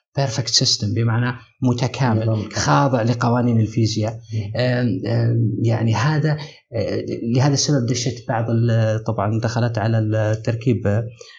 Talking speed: 90 wpm